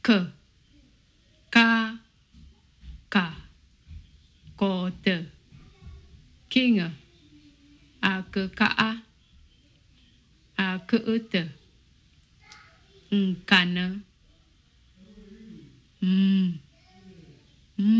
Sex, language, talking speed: female, English, 45 wpm